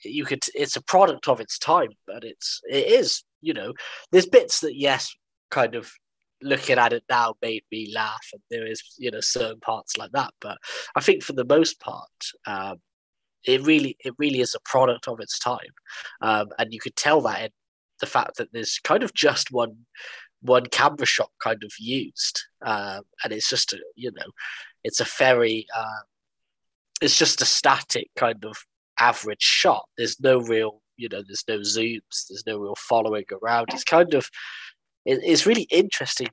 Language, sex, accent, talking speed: English, male, British, 185 wpm